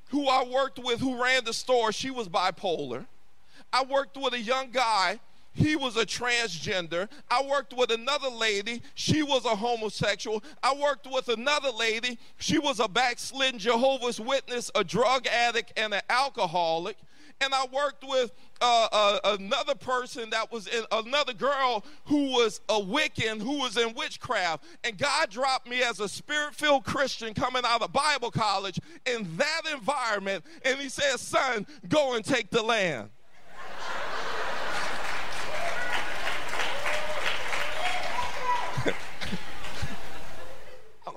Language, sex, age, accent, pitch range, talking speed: English, male, 40-59, American, 210-270 Hz, 135 wpm